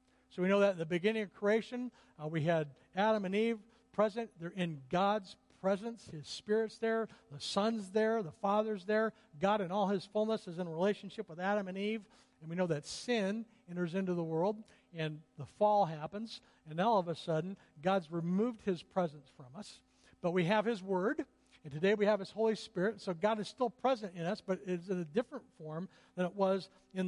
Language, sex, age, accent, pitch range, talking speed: English, male, 60-79, American, 175-220 Hz, 210 wpm